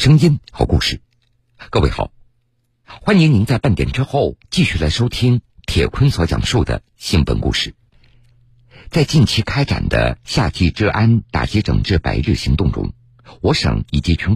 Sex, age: male, 50-69